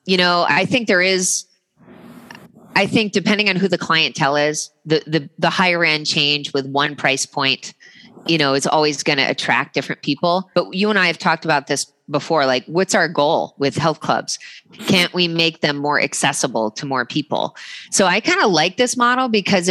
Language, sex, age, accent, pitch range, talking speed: English, female, 30-49, American, 150-185 Hz, 200 wpm